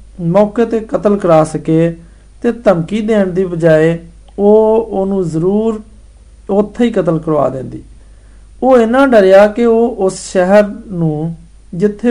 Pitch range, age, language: 155-210 Hz, 50-69, Hindi